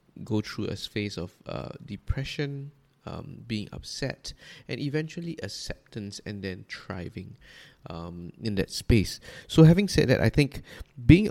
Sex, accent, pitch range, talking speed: male, Malaysian, 110-140 Hz, 145 wpm